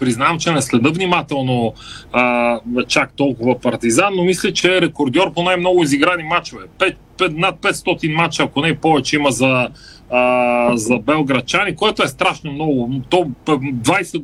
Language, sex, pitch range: Bulgarian, male, 130-175 Hz